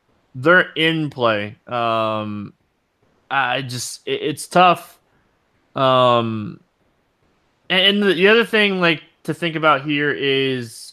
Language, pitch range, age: English, 125-155 Hz, 20-39